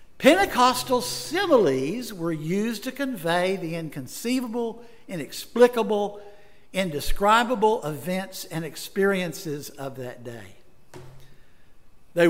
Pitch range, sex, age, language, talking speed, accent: 155-230 Hz, male, 60-79, English, 85 wpm, American